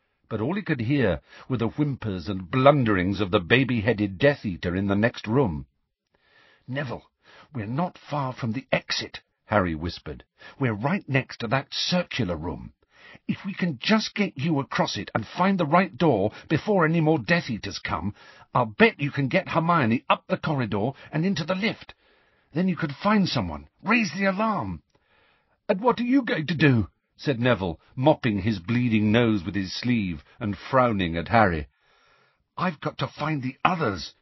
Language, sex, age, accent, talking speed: English, male, 50-69, British, 175 wpm